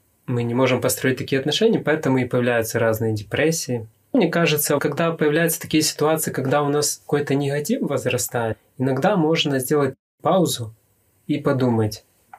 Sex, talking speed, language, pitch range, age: male, 140 wpm, Russian, 115-150 Hz, 20-39